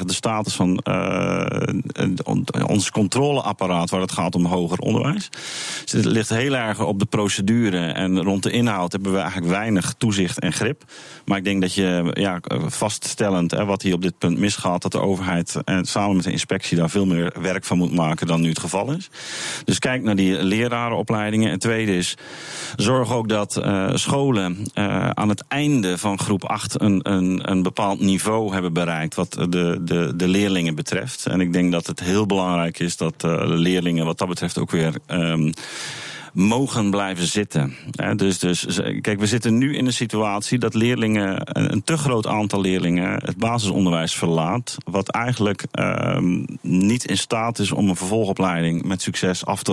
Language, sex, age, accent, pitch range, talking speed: Dutch, male, 40-59, Dutch, 90-110 Hz, 175 wpm